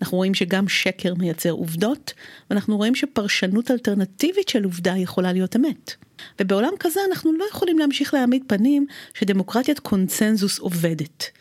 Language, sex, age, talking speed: Hebrew, female, 40-59, 135 wpm